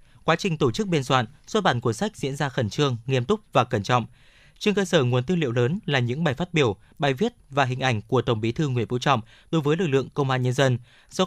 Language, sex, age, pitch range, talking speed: Vietnamese, male, 20-39, 125-160 Hz, 275 wpm